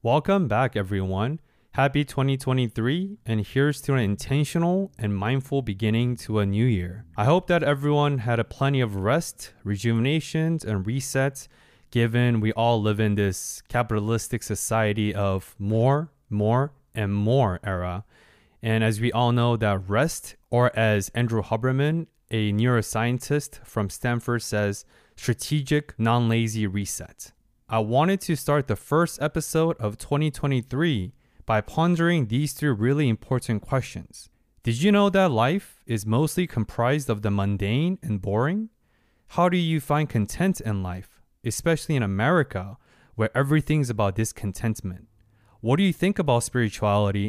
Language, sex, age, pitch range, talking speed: English, male, 20-39, 110-145 Hz, 140 wpm